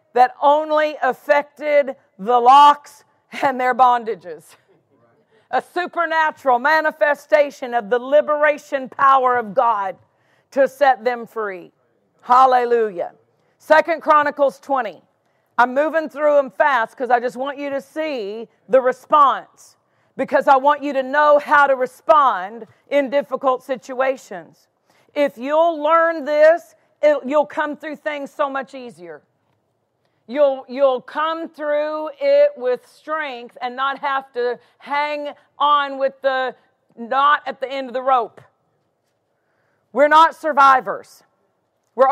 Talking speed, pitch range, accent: 125 wpm, 255-305 Hz, American